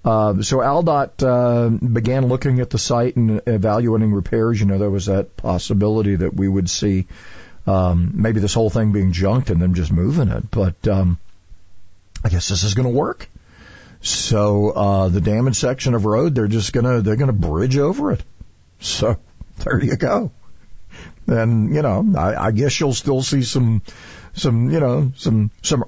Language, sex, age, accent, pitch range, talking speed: English, male, 50-69, American, 95-125 Hz, 175 wpm